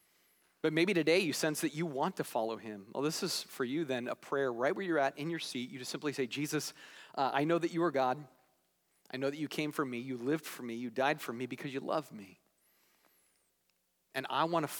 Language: English